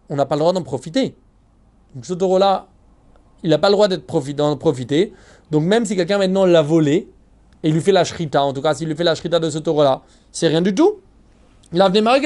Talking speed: 240 wpm